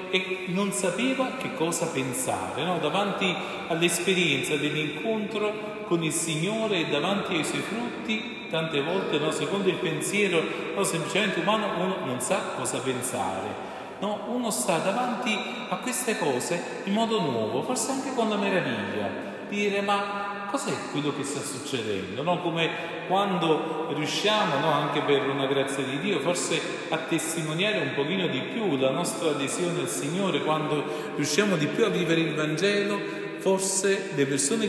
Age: 40-59